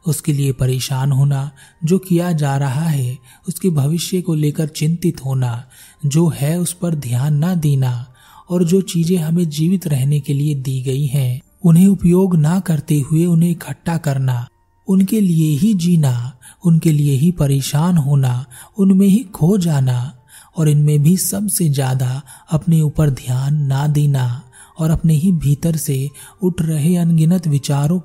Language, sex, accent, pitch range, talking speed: Hindi, male, native, 135-170 Hz, 155 wpm